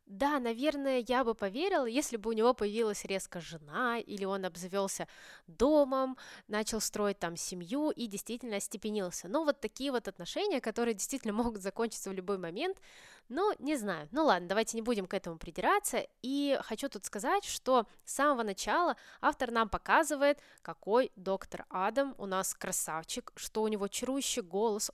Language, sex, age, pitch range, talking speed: Russian, female, 20-39, 195-265 Hz, 165 wpm